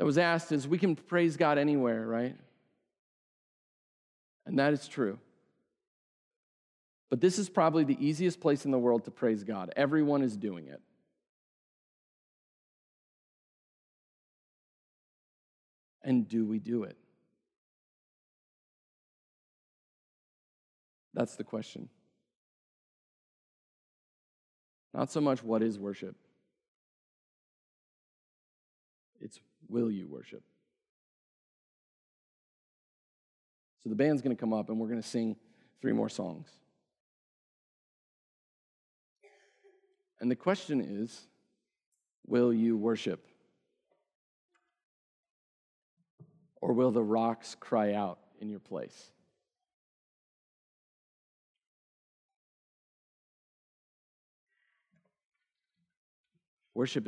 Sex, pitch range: male, 110-165 Hz